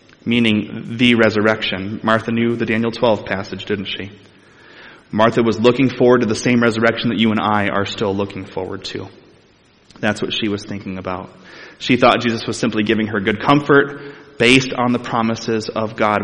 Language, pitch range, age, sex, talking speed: English, 105-145 Hz, 20-39, male, 180 wpm